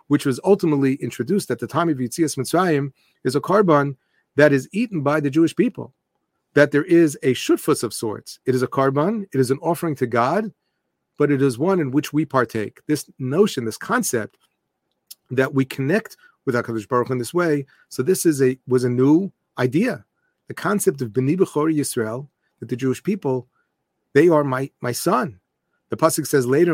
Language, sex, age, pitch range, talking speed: English, male, 40-59, 130-170 Hz, 185 wpm